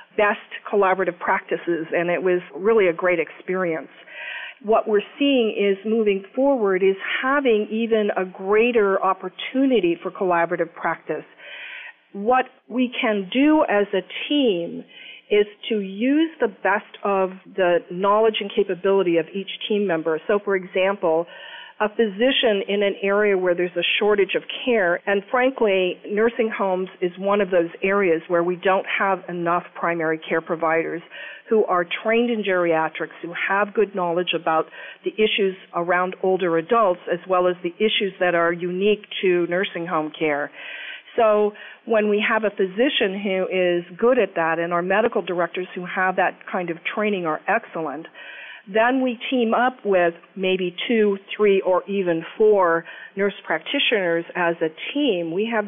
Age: 50-69